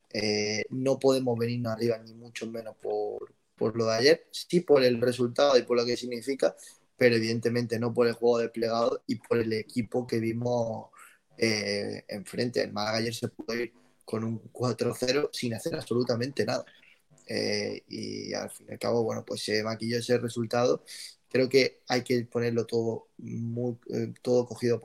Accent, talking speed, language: Spanish, 175 wpm, Spanish